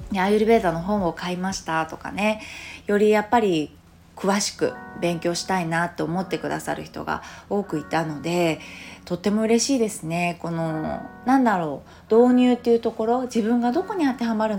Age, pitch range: 20-39, 165-230 Hz